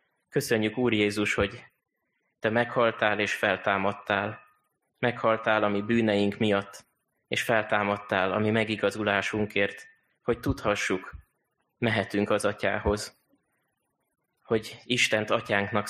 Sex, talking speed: male, 90 wpm